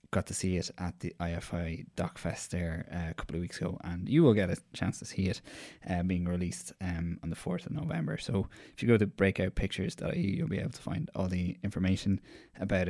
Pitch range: 95-105 Hz